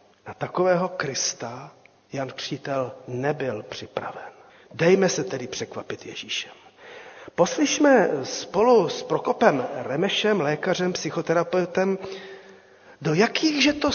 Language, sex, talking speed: Czech, male, 95 wpm